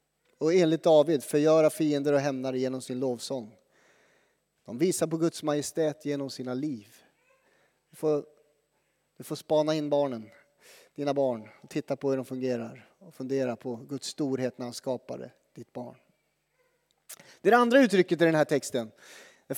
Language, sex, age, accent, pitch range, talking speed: Swedish, male, 30-49, native, 145-180 Hz, 160 wpm